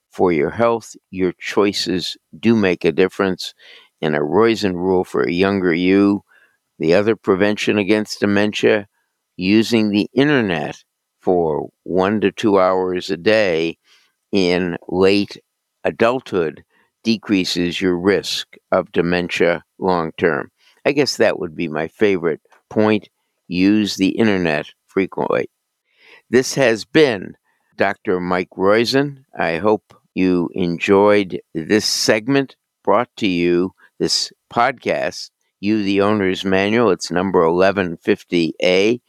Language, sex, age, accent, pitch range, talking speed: English, male, 60-79, American, 90-110 Hz, 120 wpm